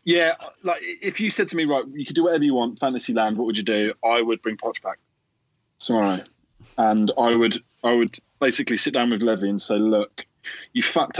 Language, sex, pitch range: English, male, 110-150 Hz